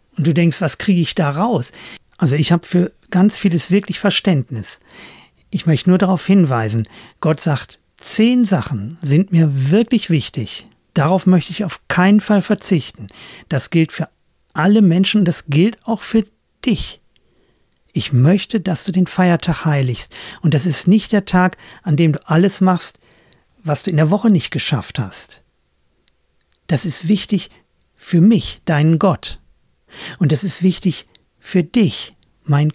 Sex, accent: male, German